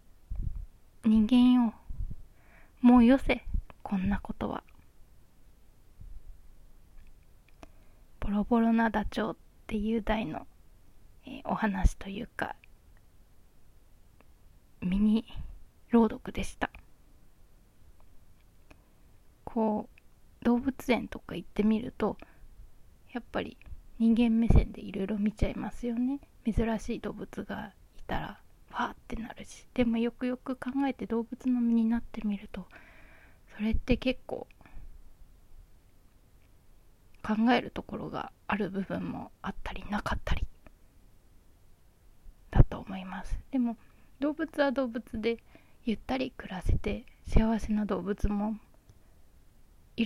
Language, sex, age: Japanese, female, 20-39